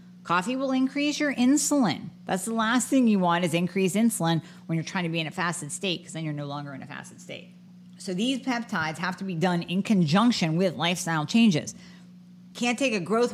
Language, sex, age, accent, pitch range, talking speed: English, female, 40-59, American, 165-205 Hz, 215 wpm